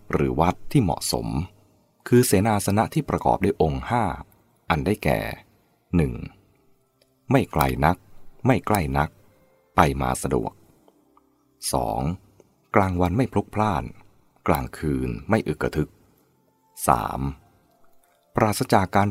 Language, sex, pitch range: English, male, 75-120 Hz